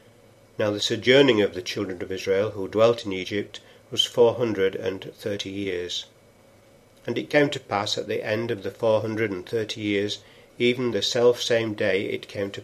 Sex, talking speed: male, 190 wpm